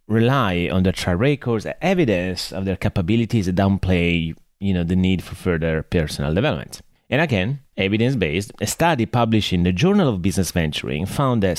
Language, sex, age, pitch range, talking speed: English, male, 30-49, 95-125 Hz, 180 wpm